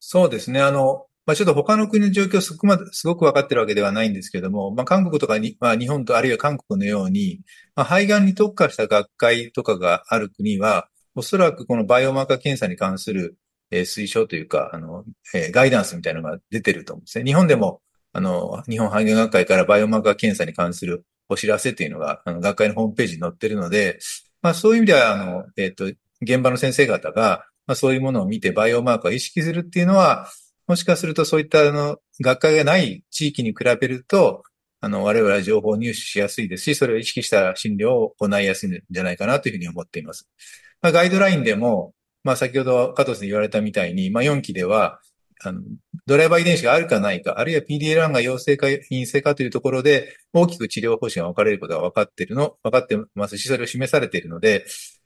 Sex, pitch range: male, 110-170 Hz